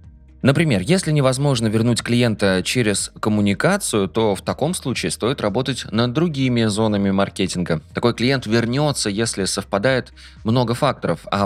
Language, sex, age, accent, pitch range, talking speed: Russian, male, 20-39, native, 95-125 Hz, 130 wpm